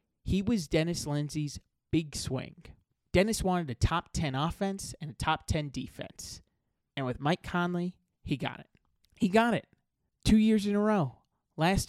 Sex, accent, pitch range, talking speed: male, American, 135-185 Hz, 165 wpm